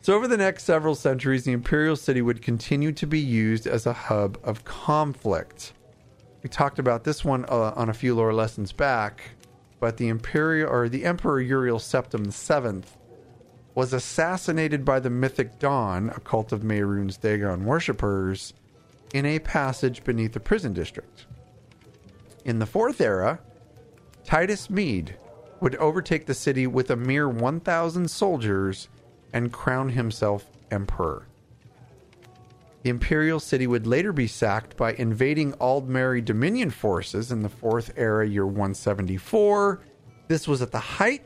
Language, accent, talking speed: English, American, 145 wpm